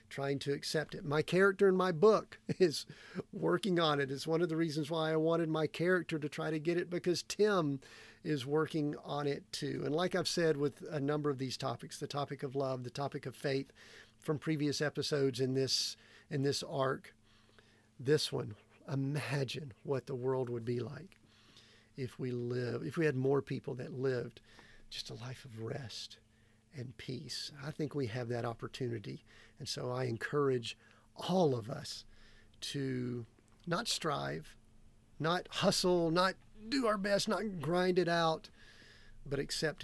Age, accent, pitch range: 50-69, American, 120-160 Hz